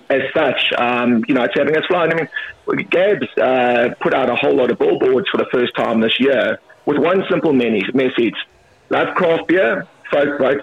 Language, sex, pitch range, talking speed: English, male, 120-140 Hz, 200 wpm